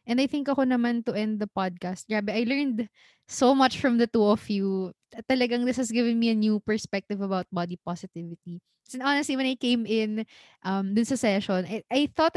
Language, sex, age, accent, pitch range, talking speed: Filipino, female, 20-39, native, 200-250 Hz, 205 wpm